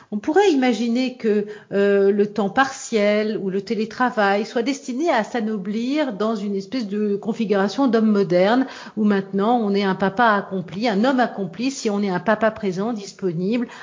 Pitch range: 190-240 Hz